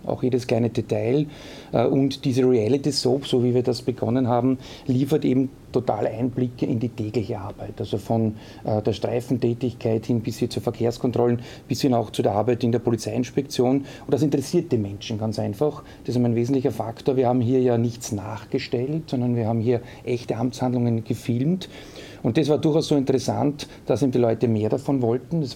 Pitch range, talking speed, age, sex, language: 115-135 Hz, 185 wpm, 40-59, male, German